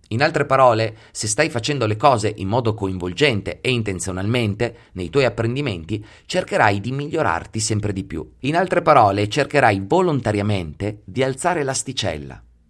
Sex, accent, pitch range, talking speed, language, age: male, native, 105-145 Hz, 140 wpm, Italian, 30-49